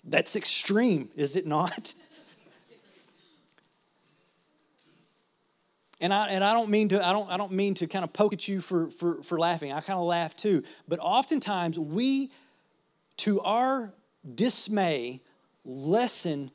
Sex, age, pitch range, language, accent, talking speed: male, 40-59, 165-220 Hz, English, American, 140 wpm